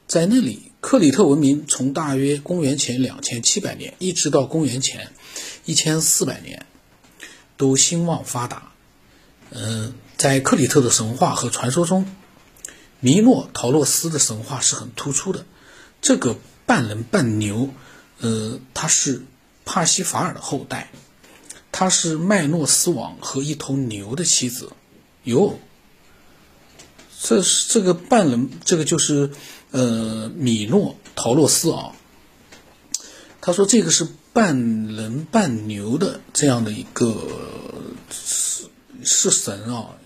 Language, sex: Chinese, male